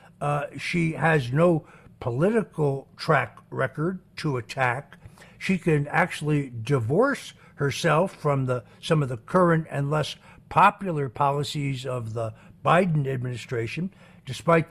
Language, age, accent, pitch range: English, 60-79, American, 130-165 Hz